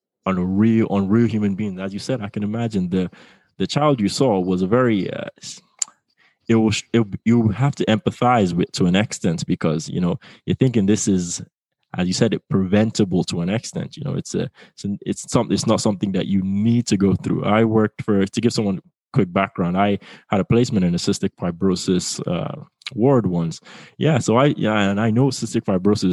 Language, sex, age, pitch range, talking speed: English, male, 20-39, 95-115 Hz, 215 wpm